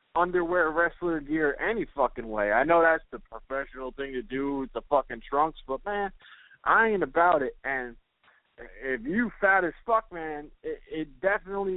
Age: 20-39